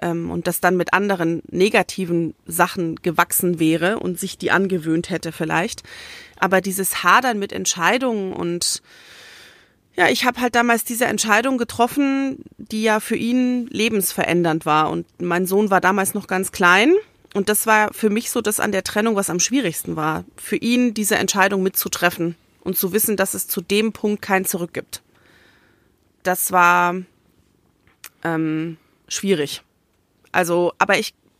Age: 30-49